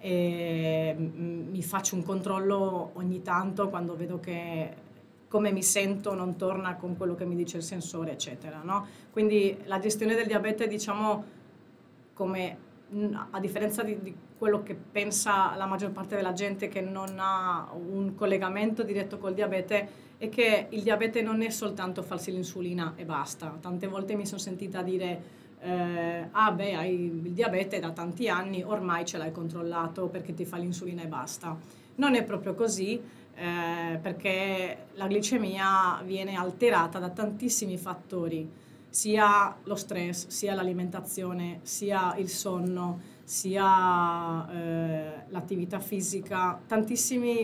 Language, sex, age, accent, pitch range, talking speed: Italian, female, 30-49, native, 175-205 Hz, 140 wpm